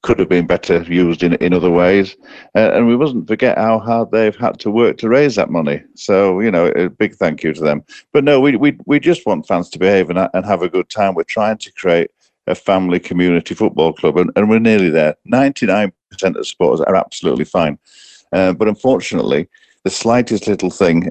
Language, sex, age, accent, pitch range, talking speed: English, male, 50-69, British, 85-105 Hz, 220 wpm